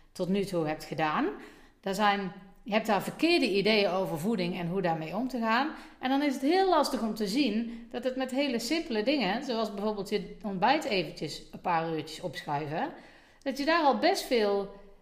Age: 40-59